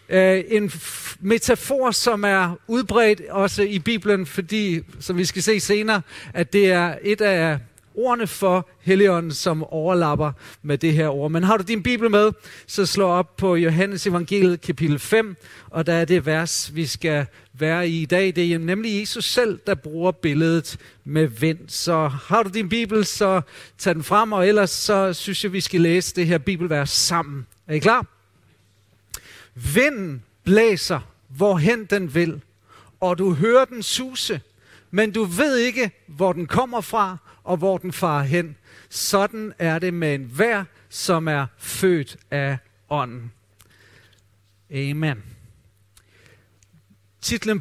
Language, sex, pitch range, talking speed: Danish, male, 125-195 Hz, 155 wpm